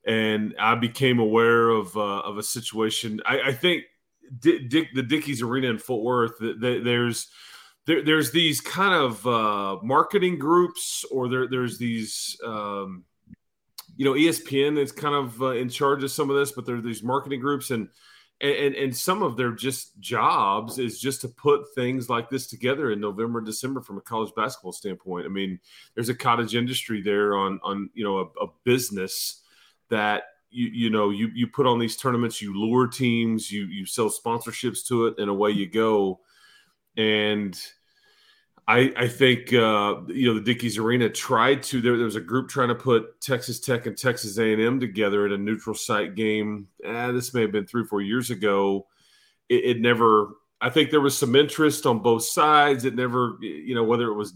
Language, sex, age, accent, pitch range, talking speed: English, male, 30-49, American, 105-130 Hz, 195 wpm